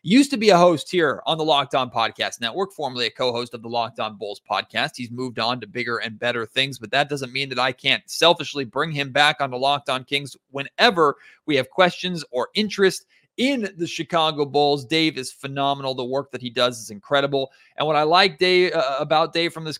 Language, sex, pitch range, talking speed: English, male, 135-165 Hz, 225 wpm